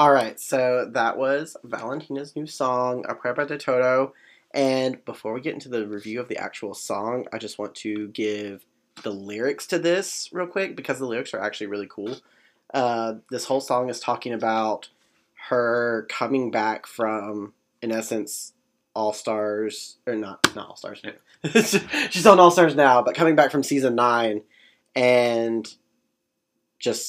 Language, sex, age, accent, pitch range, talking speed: English, male, 20-39, American, 105-125 Hz, 165 wpm